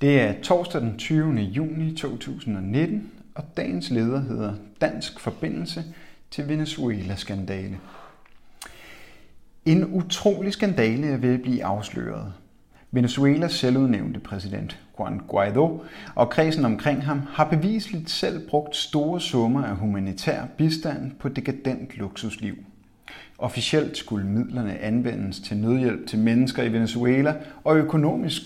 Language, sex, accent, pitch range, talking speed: Danish, male, native, 105-145 Hz, 120 wpm